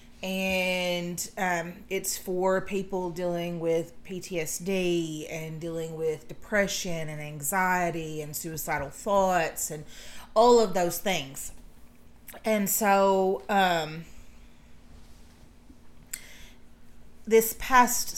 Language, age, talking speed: English, 30-49, 90 wpm